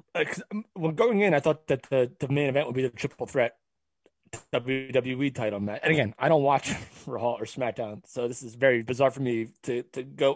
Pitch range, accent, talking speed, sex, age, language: 120-150 Hz, American, 220 wpm, male, 30-49, English